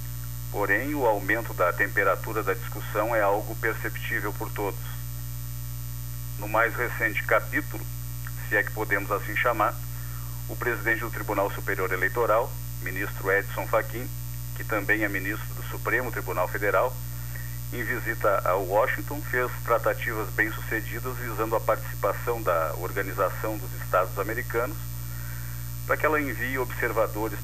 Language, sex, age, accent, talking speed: Portuguese, male, 50-69, Brazilian, 130 wpm